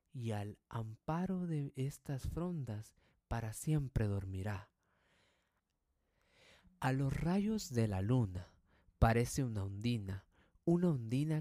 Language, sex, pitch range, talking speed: Spanish, male, 105-140 Hz, 105 wpm